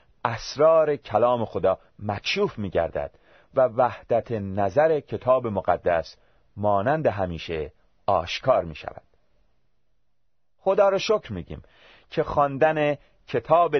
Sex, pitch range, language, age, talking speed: male, 100-165 Hz, Persian, 40-59, 90 wpm